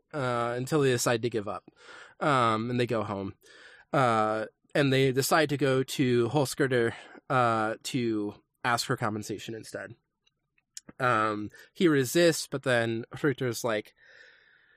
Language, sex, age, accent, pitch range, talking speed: English, male, 20-39, American, 120-150 Hz, 135 wpm